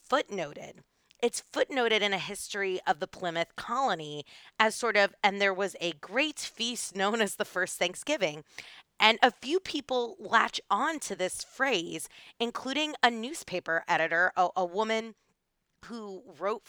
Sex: female